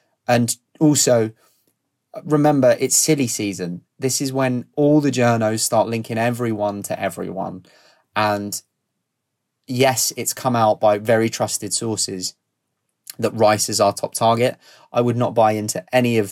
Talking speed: 145 wpm